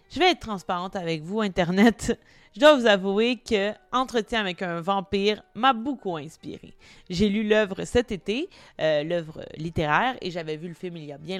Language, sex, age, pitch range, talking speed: French, female, 30-49, 170-240 Hz, 190 wpm